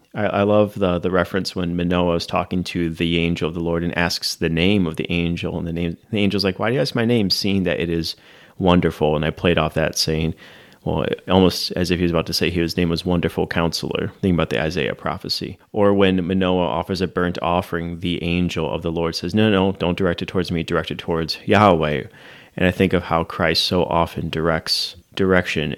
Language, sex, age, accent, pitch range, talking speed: English, male, 30-49, American, 85-95 Hz, 235 wpm